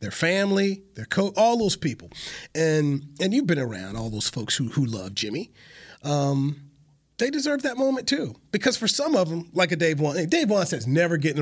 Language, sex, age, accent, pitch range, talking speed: English, male, 30-49, American, 140-195 Hz, 205 wpm